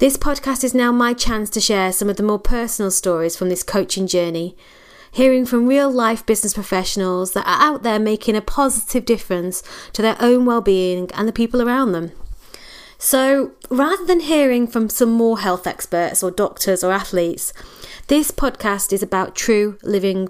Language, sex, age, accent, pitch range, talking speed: English, female, 30-49, British, 185-240 Hz, 175 wpm